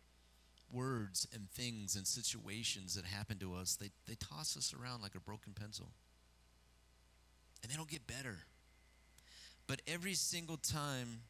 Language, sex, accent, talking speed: English, male, American, 145 wpm